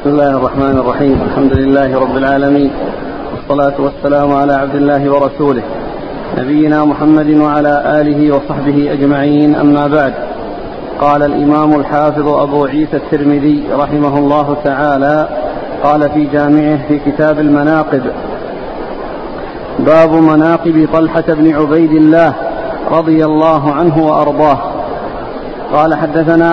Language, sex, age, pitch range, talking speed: Arabic, male, 50-69, 145-165 Hz, 110 wpm